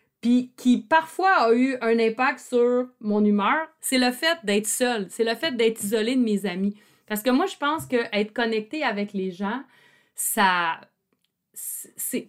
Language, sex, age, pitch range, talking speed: French, female, 30-49, 215-265 Hz, 170 wpm